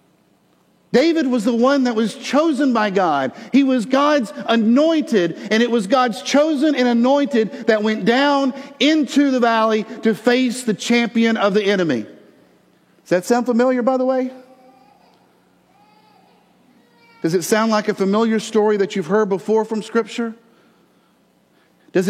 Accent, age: American, 50-69